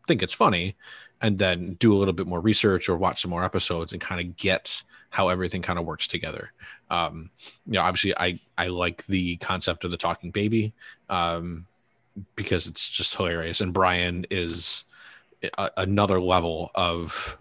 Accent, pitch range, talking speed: American, 85-100 Hz, 175 wpm